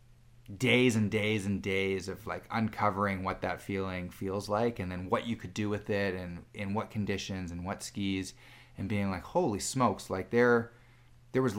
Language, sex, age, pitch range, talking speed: English, male, 30-49, 95-120 Hz, 190 wpm